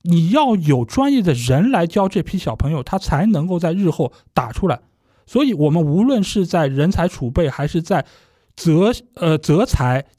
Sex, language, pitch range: male, Chinese, 135-190 Hz